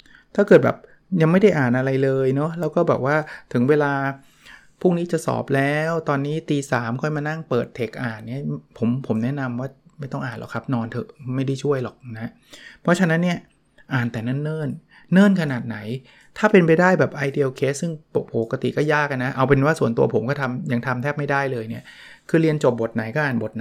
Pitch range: 120-150 Hz